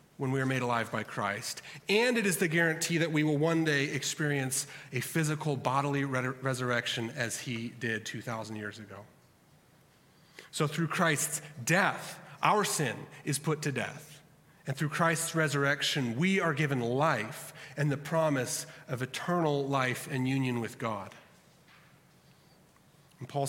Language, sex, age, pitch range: English, male, 30-49, 120-150 Hz